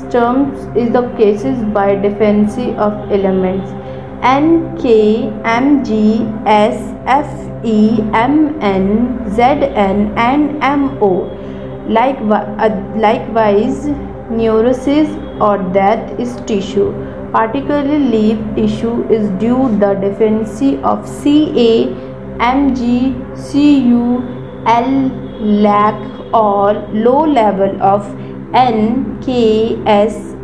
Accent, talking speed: native, 100 wpm